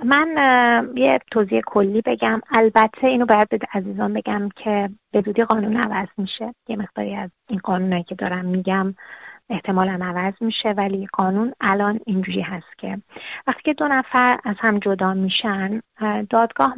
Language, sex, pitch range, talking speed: Persian, female, 195-230 Hz, 145 wpm